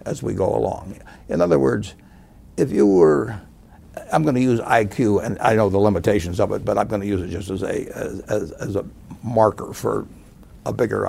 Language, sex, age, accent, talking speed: English, male, 60-79, American, 215 wpm